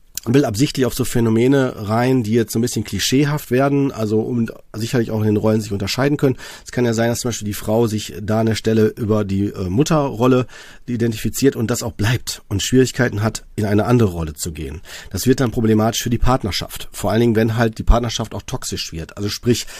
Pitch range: 110-125 Hz